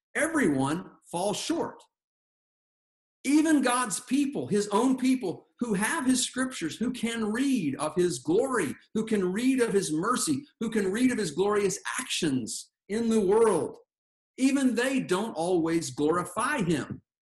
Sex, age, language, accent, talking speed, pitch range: male, 50-69, English, American, 145 wpm, 160-250 Hz